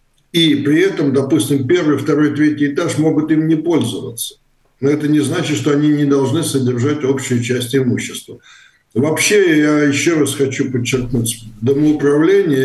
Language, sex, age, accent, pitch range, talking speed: Russian, male, 60-79, native, 125-155 Hz, 145 wpm